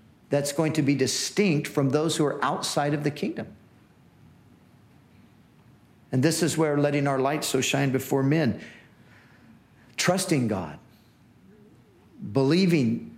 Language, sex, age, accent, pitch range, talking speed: English, male, 50-69, American, 115-140 Hz, 125 wpm